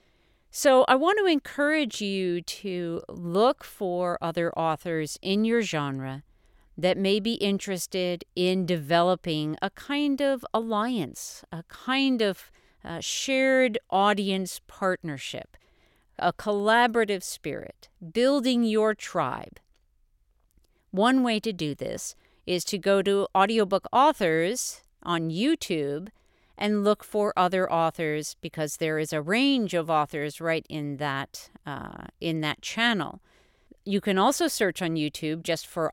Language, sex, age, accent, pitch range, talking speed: English, female, 50-69, American, 160-215 Hz, 125 wpm